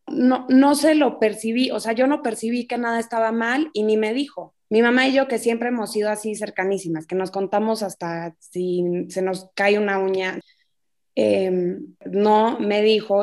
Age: 20-39